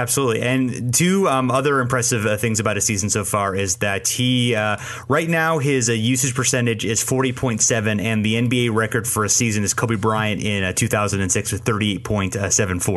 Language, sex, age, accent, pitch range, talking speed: English, male, 30-49, American, 105-125 Hz, 170 wpm